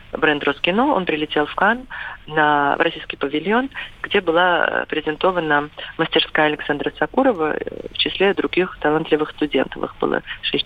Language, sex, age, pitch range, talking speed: Russian, female, 30-49, 145-170 Hz, 135 wpm